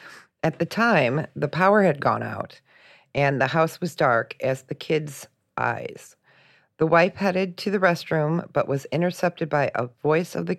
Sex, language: female, English